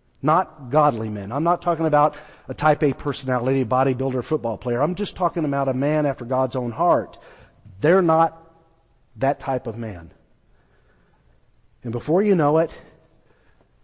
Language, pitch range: English, 130-170 Hz